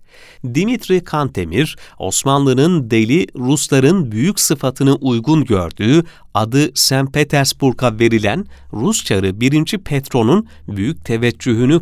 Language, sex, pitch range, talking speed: Turkish, male, 110-155 Hz, 90 wpm